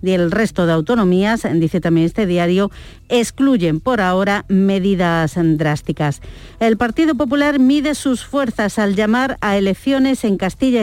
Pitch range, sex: 185-240 Hz, female